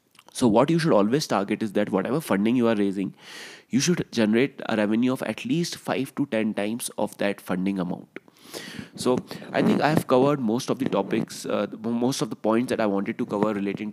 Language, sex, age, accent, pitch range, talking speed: English, male, 30-49, Indian, 110-140 Hz, 215 wpm